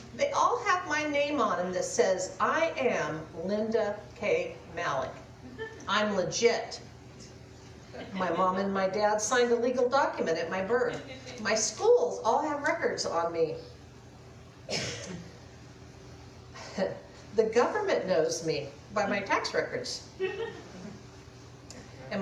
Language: English